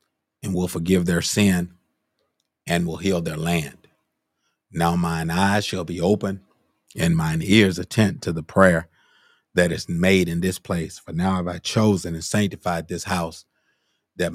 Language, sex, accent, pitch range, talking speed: English, male, American, 85-100 Hz, 165 wpm